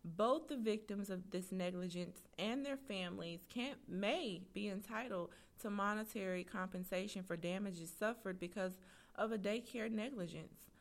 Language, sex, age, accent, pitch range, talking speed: English, female, 30-49, American, 185-225 Hz, 130 wpm